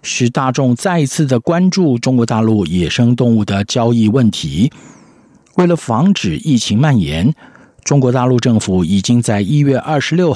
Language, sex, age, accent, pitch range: Chinese, male, 50-69, native, 110-145 Hz